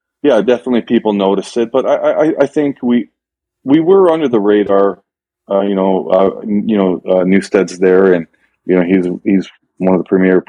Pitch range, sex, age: 95-110 Hz, male, 30-49